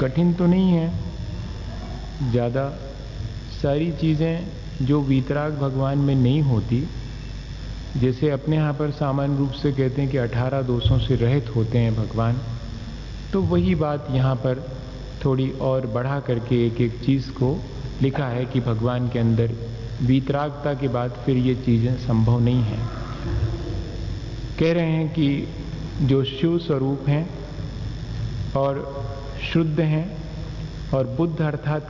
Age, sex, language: 40-59, male, Hindi